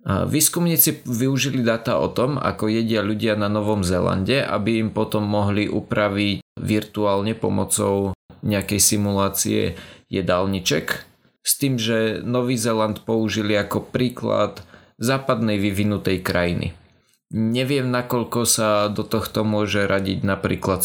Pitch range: 100-115 Hz